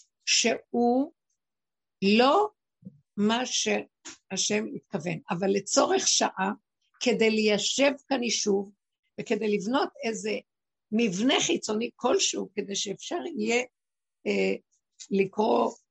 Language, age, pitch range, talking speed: Hebrew, 60-79, 195-235 Hz, 85 wpm